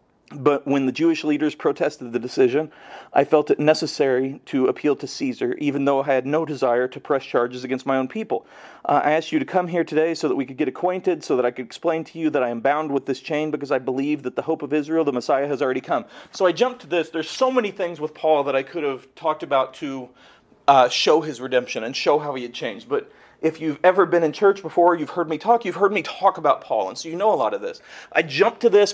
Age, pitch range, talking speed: 40-59, 155-210 Hz, 265 wpm